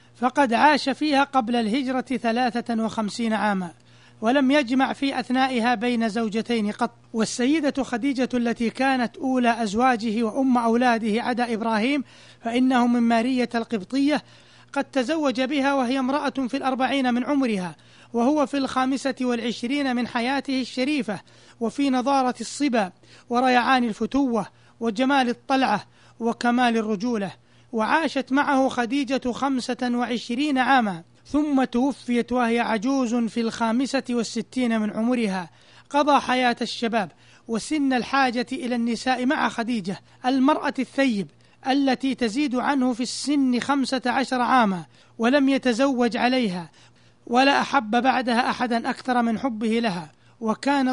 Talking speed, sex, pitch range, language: 120 wpm, male, 230-265 Hz, Arabic